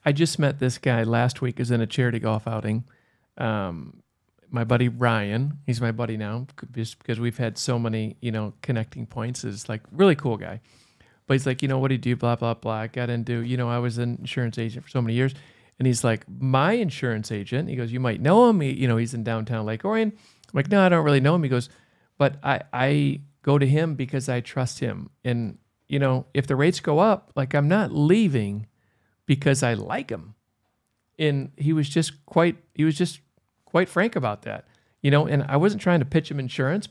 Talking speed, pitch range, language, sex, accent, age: 225 wpm, 120-165 Hz, English, male, American, 40-59